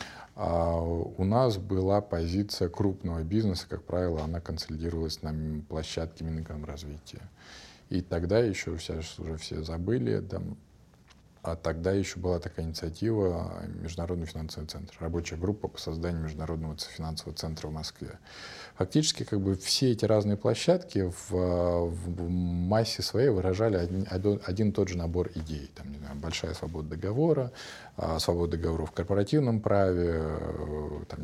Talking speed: 135 wpm